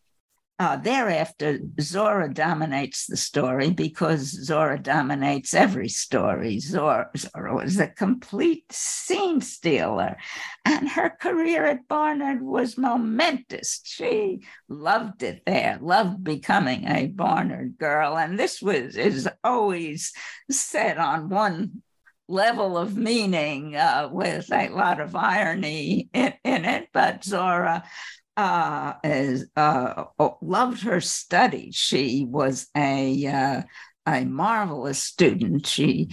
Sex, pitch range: female, 145-245 Hz